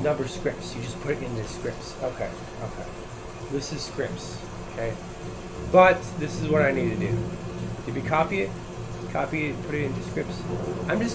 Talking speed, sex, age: 190 wpm, male, 30-49